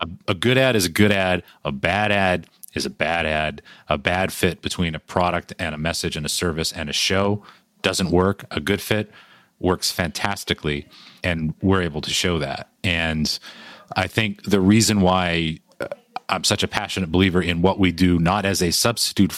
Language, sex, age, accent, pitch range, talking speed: English, male, 40-59, American, 80-100 Hz, 190 wpm